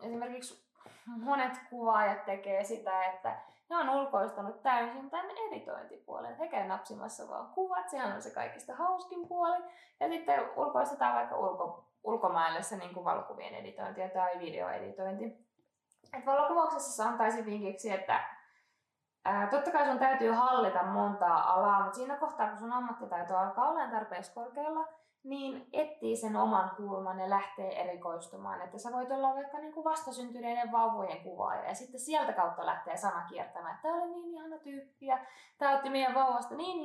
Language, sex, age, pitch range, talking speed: Finnish, female, 20-39, 195-300 Hz, 140 wpm